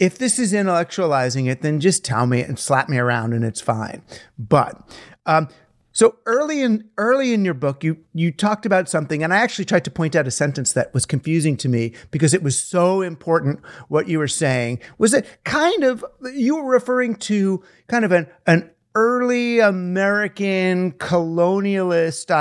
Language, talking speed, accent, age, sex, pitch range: English, 180 wpm, American, 50-69, male, 150-200 Hz